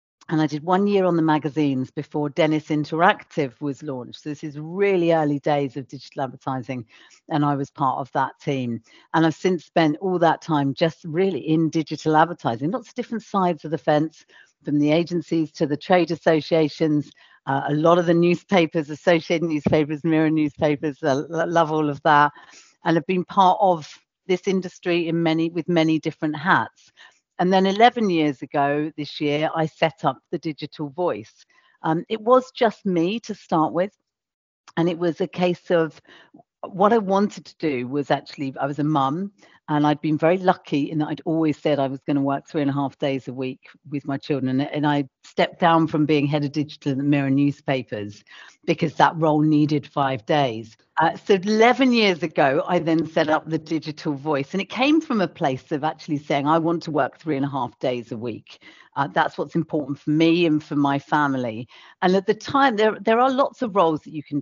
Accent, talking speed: British, 205 wpm